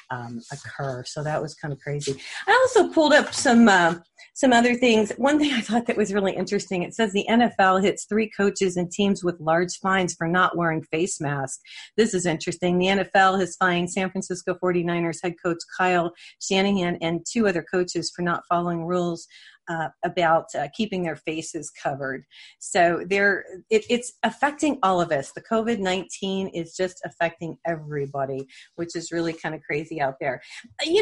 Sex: female